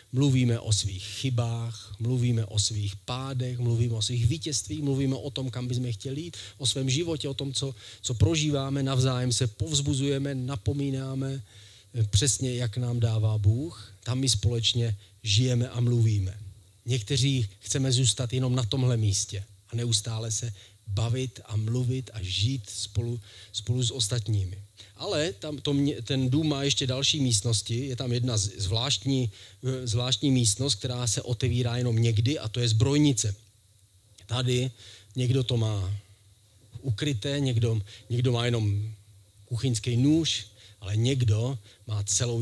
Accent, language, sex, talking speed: native, Czech, male, 145 wpm